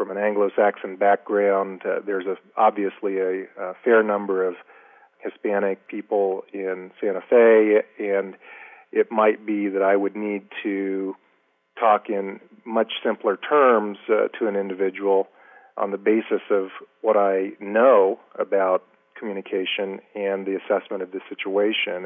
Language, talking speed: English, 135 wpm